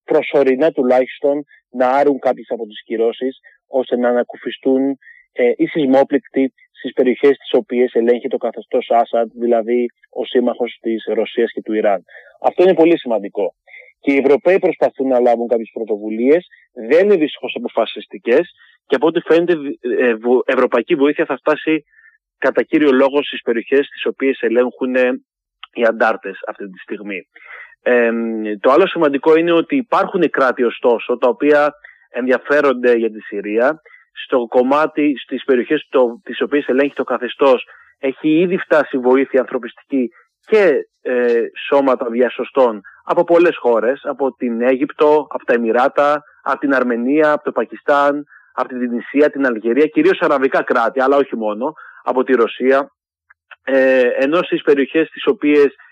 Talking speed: 145 wpm